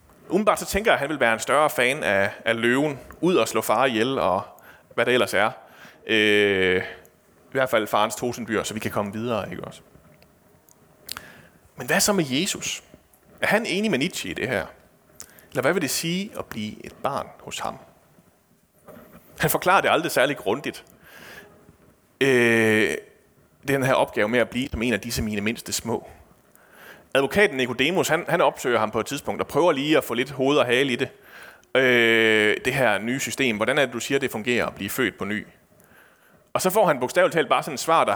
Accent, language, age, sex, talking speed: native, Danish, 30-49, male, 205 wpm